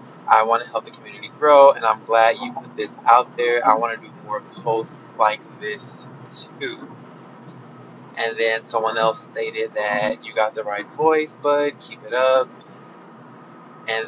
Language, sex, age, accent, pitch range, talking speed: English, male, 20-39, American, 115-150 Hz, 170 wpm